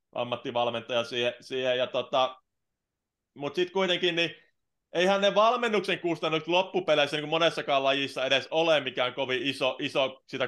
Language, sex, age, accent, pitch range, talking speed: Finnish, male, 30-49, native, 130-160 Hz, 135 wpm